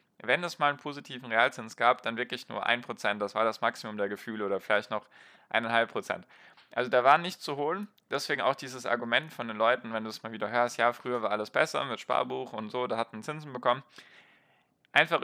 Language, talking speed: German, 210 wpm